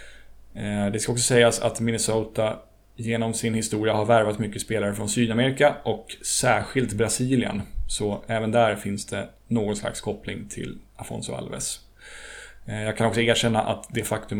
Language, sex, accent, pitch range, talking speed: Swedish, male, native, 105-120 Hz, 150 wpm